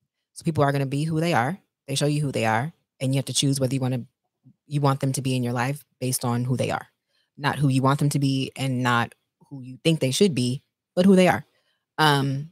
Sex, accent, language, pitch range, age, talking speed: female, American, English, 130-180 Hz, 20-39, 275 wpm